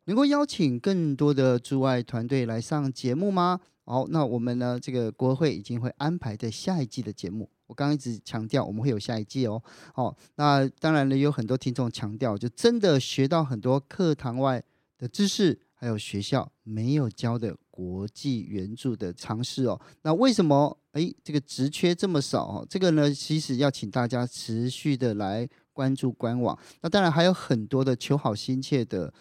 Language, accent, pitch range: Chinese, native, 120-145 Hz